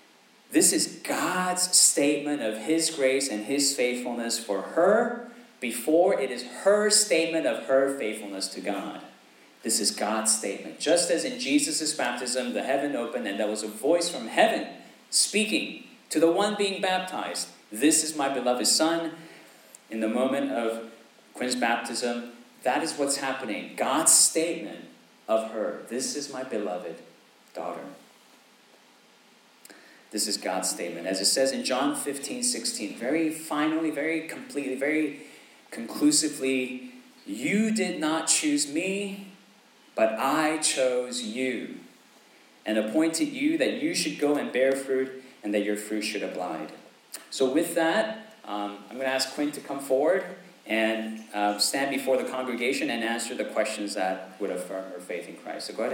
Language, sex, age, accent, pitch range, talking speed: English, male, 40-59, American, 115-165 Hz, 155 wpm